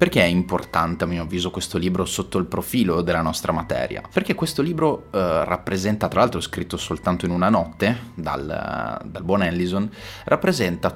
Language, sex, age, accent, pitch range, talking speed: Italian, male, 30-49, native, 85-110 Hz, 170 wpm